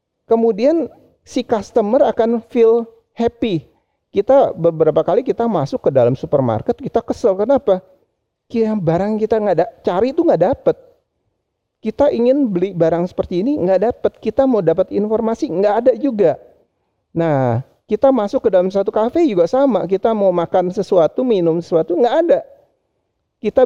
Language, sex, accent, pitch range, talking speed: Indonesian, male, native, 140-220 Hz, 150 wpm